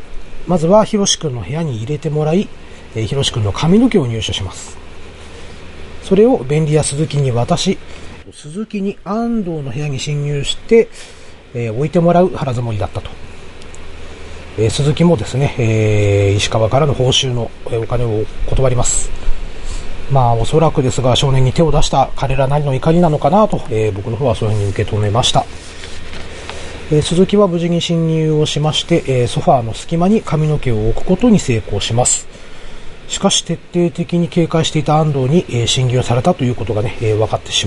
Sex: male